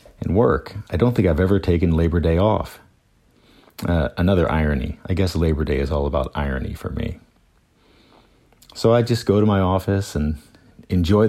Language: English